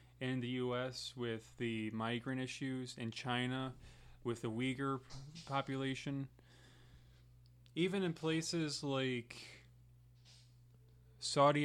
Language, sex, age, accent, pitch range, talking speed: English, male, 20-39, American, 120-130 Hz, 95 wpm